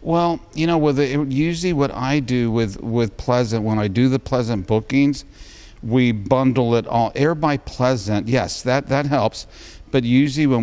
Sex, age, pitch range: male, 50-69, 105-130 Hz